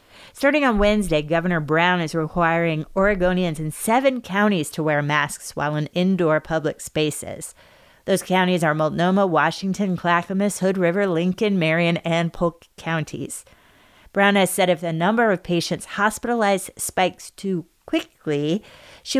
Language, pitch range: English, 155-185 Hz